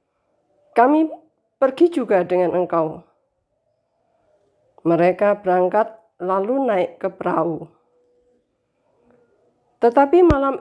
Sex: female